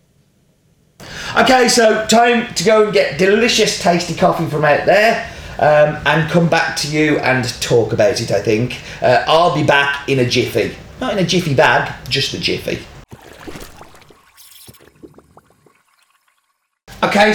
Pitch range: 125-170 Hz